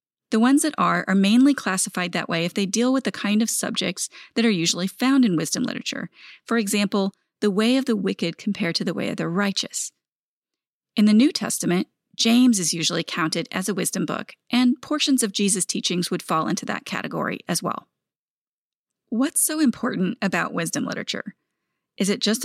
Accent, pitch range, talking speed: American, 195-255 Hz, 190 wpm